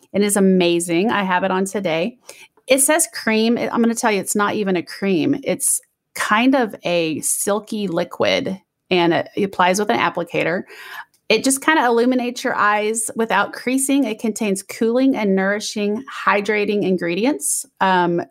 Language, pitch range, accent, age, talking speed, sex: English, 180-240 Hz, American, 30-49, 165 wpm, female